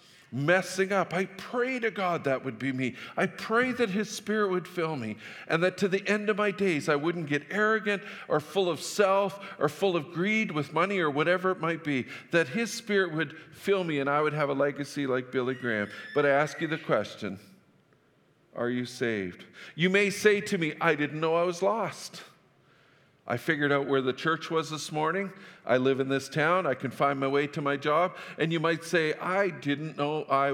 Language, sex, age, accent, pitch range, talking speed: English, male, 50-69, American, 130-180 Hz, 215 wpm